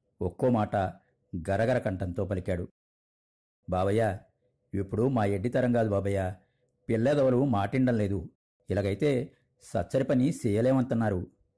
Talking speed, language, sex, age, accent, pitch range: 90 wpm, Telugu, male, 50-69, native, 100-130 Hz